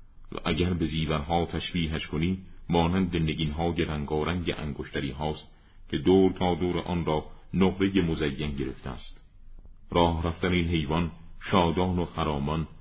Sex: male